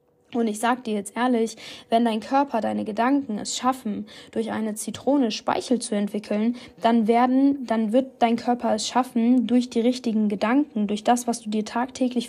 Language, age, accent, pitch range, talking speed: German, 10-29, German, 215-245 Hz, 175 wpm